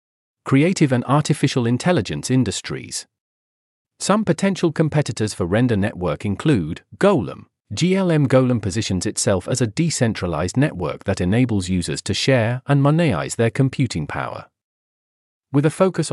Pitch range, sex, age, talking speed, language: 110-140 Hz, male, 40-59, 125 wpm, English